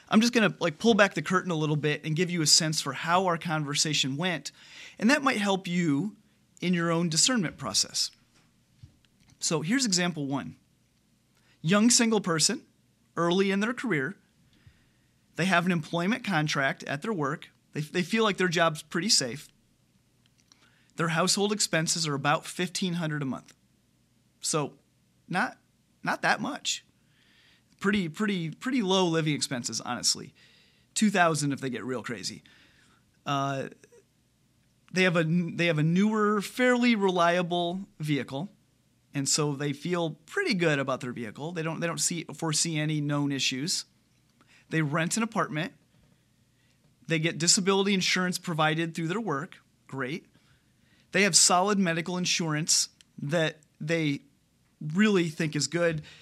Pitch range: 150-185 Hz